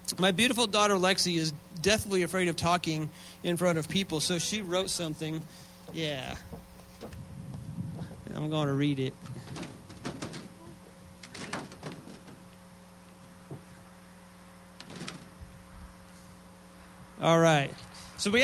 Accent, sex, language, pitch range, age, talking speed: American, male, English, 155-190 Hz, 40-59, 90 wpm